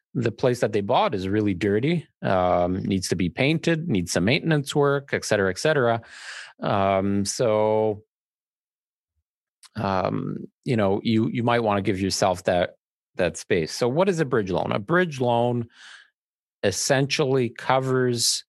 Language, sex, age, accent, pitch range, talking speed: English, male, 40-59, American, 95-125 Hz, 155 wpm